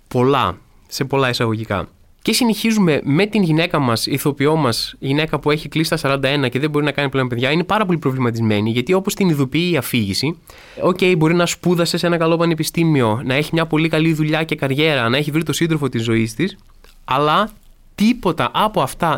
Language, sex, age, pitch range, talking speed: Greek, male, 20-39, 135-180 Hz, 195 wpm